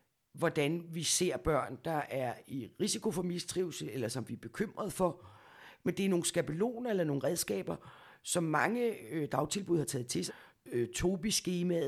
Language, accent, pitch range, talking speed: Danish, native, 145-185 Hz, 155 wpm